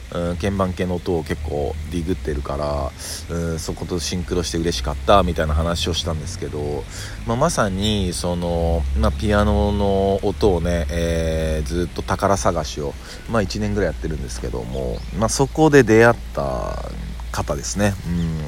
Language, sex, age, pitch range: Japanese, male, 40-59, 85-105 Hz